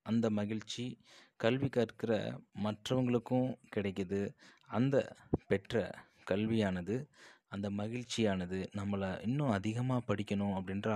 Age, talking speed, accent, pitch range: 20-39, 90 wpm, native, 95-110 Hz